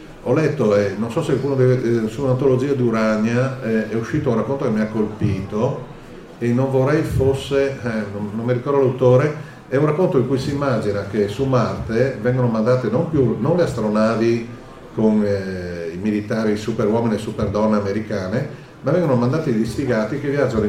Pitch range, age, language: 110-135 Hz, 40-59, Italian